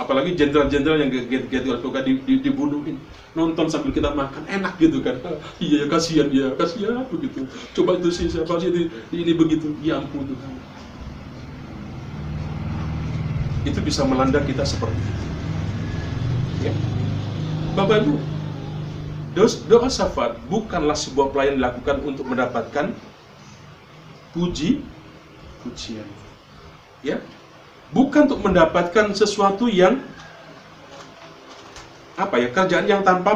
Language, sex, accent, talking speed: Indonesian, male, native, 110 wpm